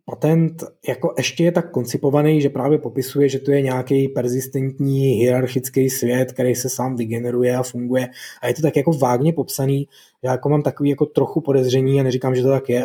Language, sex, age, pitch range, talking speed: Czech, male, 20-39, 120-140 Hz, 195 wpm